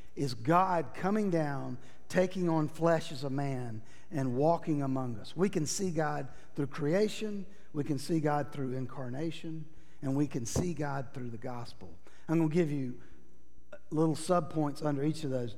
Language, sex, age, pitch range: English, male, 50-69, 125-180 Hz